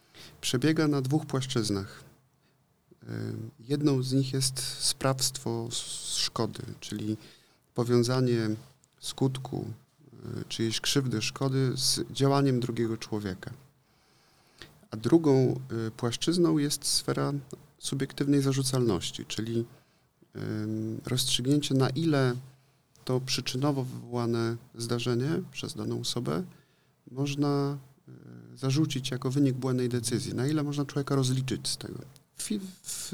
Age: 40-59